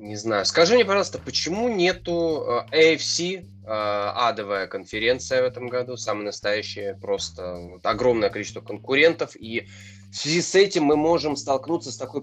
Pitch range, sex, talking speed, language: 105-170 Hz, male, 145 wpm, Russian